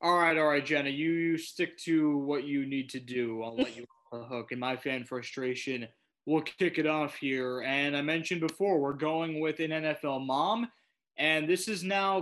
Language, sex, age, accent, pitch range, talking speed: English, male, 20-39, American, 125-180 Hz, 210 wpm